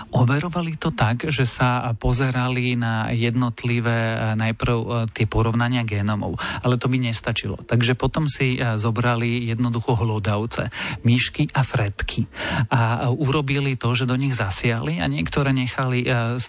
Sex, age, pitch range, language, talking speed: male, 40-59, 115-125 Hz, Slovak, 130 wpm